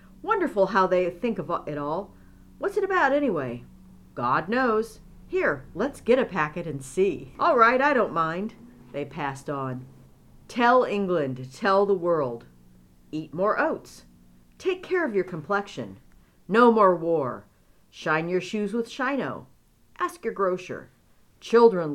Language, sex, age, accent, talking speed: English, female, 50-69, American, 145 wpm